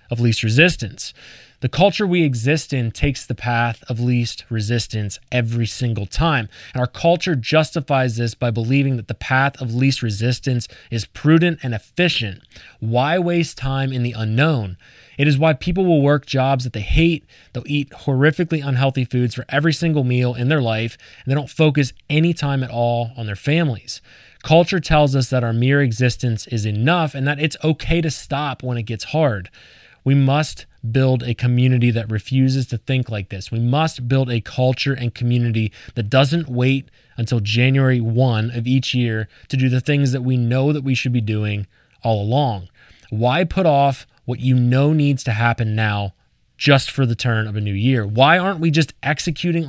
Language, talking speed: English, 190 wpm